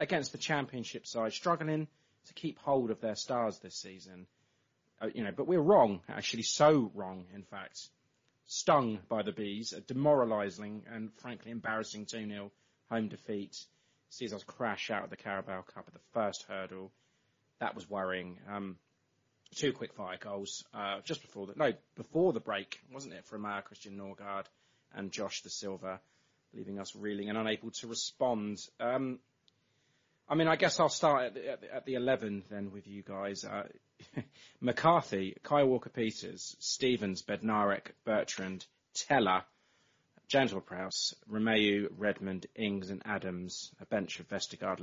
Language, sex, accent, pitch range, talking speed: English, male, British, 100-120 Hz, 160 wpm